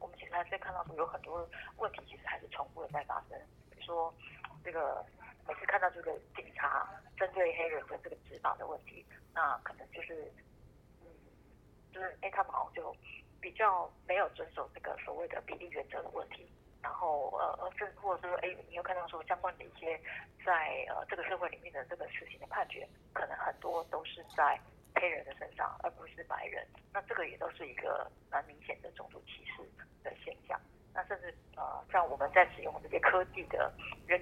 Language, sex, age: Chinese, female, 30-49